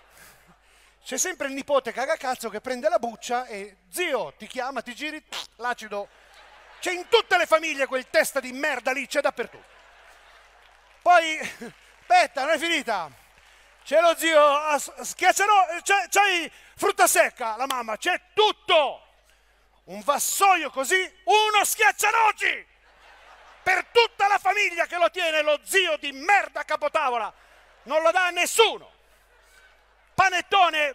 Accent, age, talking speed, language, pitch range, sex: native, 40-59, 140 wpm, Italian, 250-350 Hz, male